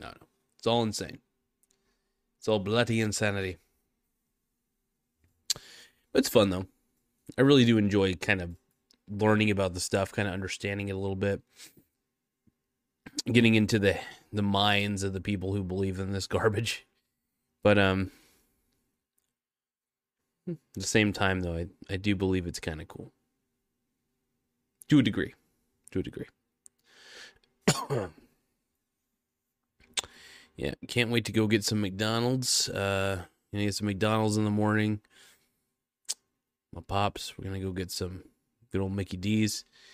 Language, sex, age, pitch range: English, male, 20-39, 95-110 Hz